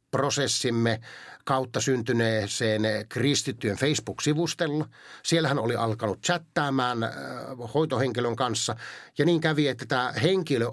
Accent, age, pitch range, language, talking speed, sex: native, 50-69, 115-150 Hz, Finnish, 105 wpm, male